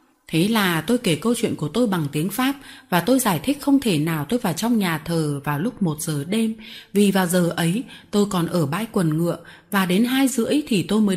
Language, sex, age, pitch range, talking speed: Vietnamese, female, 20-39, 175-240 Hz, 240 wpm